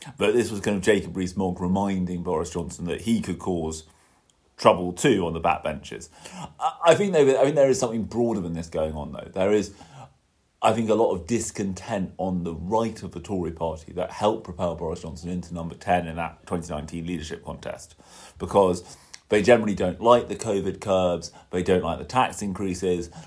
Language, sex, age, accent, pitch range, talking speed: English, male, 30-49, British, 85-105 Hz, 195 wpm